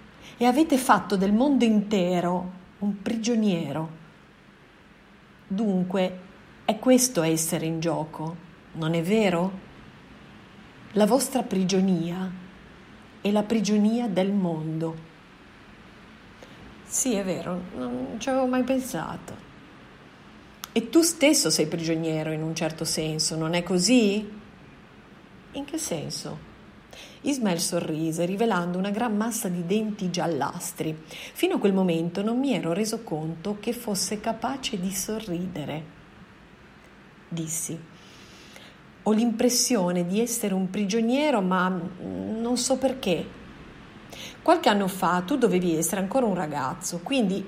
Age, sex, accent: 40-59, female, native